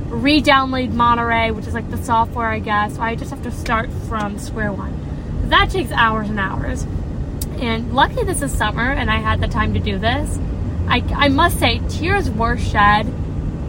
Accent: American